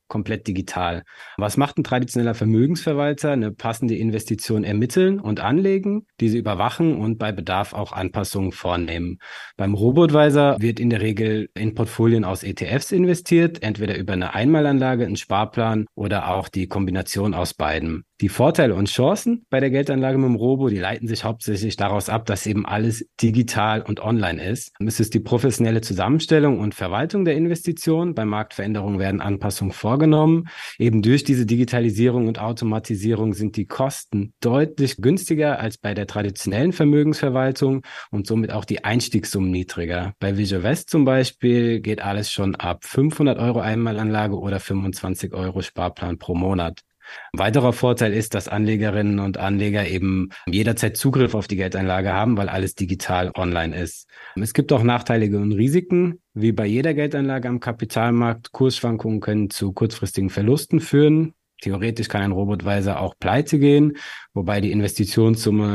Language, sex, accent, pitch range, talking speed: German, male, German, 100-130 Hz, 155 wpm